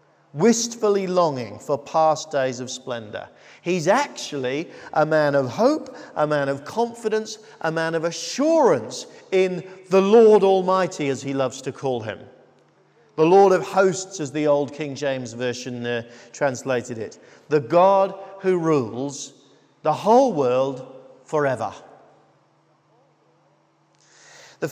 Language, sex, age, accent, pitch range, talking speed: English, male, 50-69, British, 135-185 Hz, 130 wpm